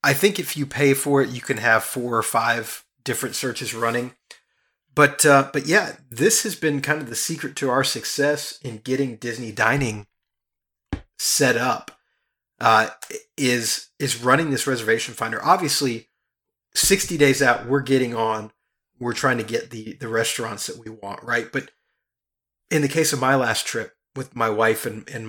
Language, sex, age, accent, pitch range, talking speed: English, male, 30-49, American, 120-145 Hz, 175 wpm